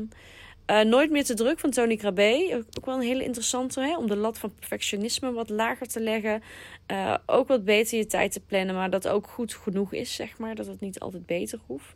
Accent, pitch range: Dutch, 185-230 Hz